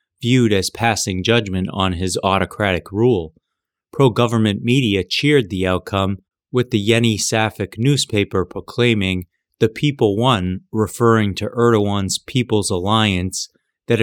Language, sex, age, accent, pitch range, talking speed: English, male, 30-49, American, 95-115 Hz, 115 wpm